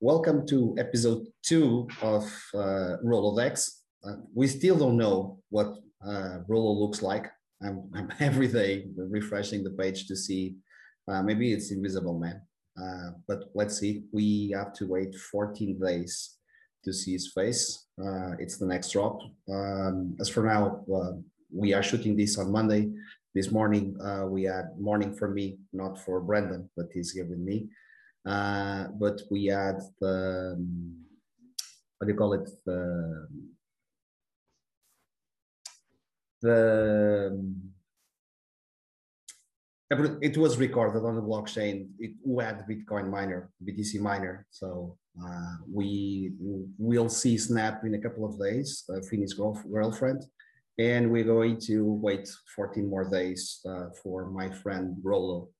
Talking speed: 145 wpm